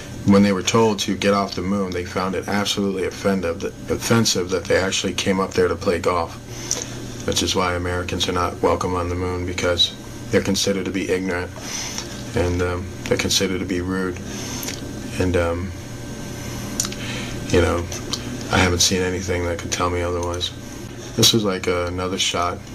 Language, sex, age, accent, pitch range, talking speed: English, male, 40-59, American, 90-115 Hz, 170 wpm